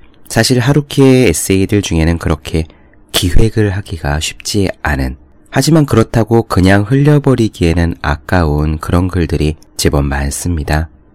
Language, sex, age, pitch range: Korean, male, 30-49, 75-105 Hz